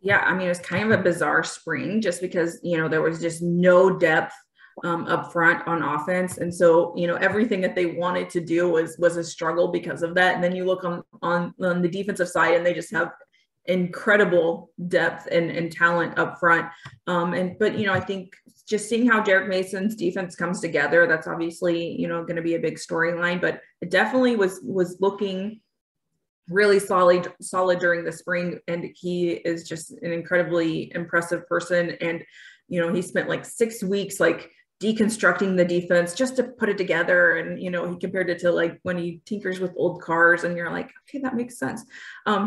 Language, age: English, 20-39